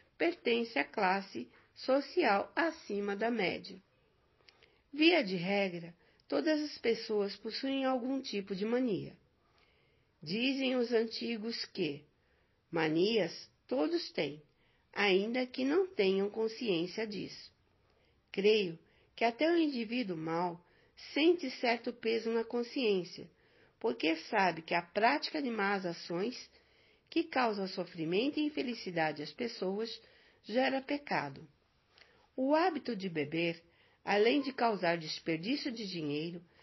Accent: Brazilian